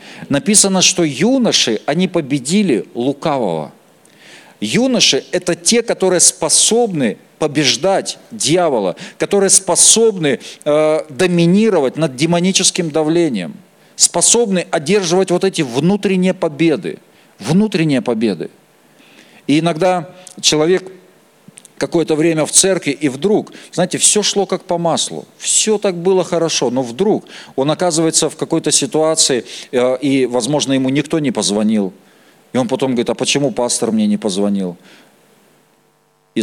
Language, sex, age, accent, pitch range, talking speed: Russian, male, 40-59, native, 135-185 Hz, 115 wpm